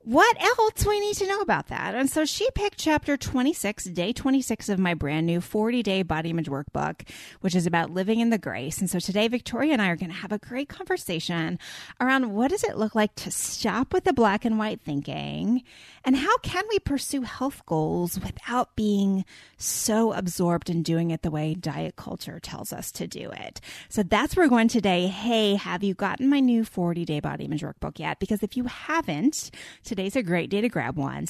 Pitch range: 180-260 Hz